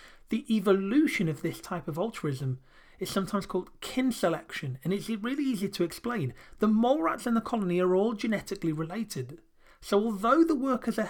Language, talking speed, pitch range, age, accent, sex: English, 180 wpm, 165-220 Hz, 30-49, British, male